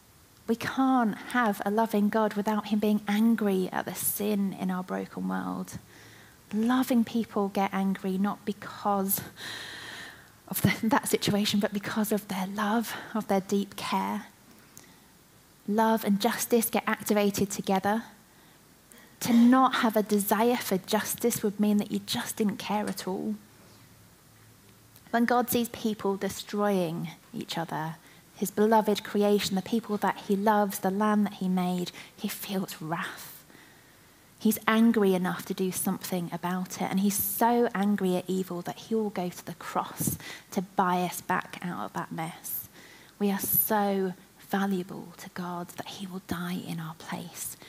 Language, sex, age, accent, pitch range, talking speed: English, female, 20-39, British, 180-215 Hz, 155 wpm